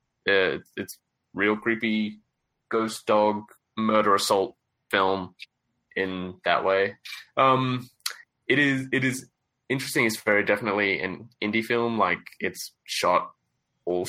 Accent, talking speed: Australian, 120 wpm